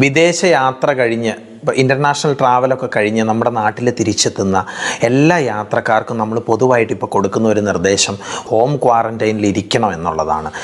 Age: 30-49